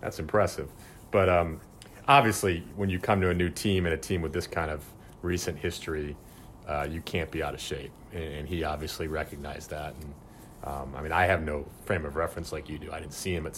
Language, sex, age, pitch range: English, male, 30-49, 80-100 Hz